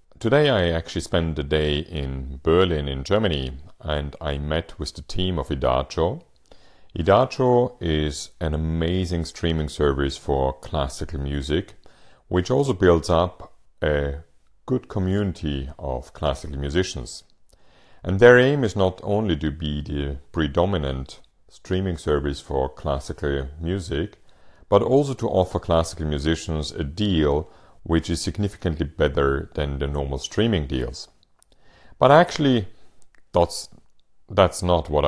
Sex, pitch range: male, 70-95 Hz